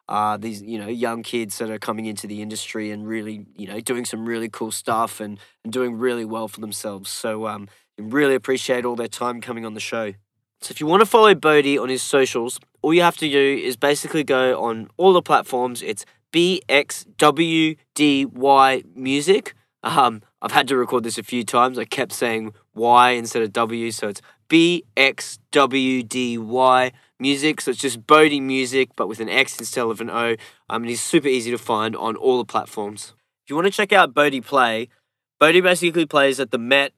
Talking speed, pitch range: 205 wpm, 115-140 Hz